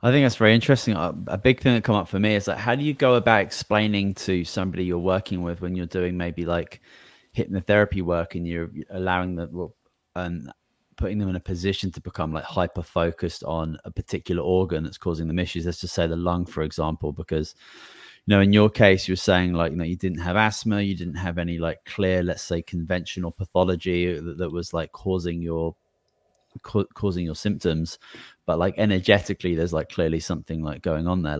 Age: 30-49